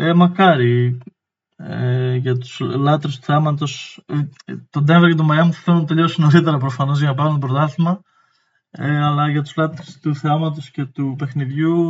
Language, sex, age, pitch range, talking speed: Greek, male, 20-39, 135-155 Hz, 170 wpm